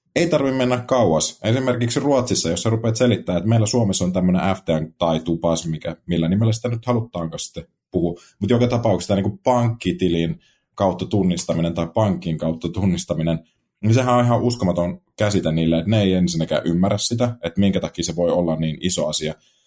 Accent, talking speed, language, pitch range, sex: native, 175 wpm, Finnish, 85-115 Hz, male